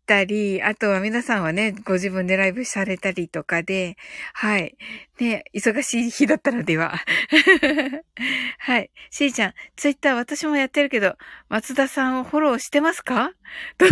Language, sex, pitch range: Japanese, female, 195-305 Hz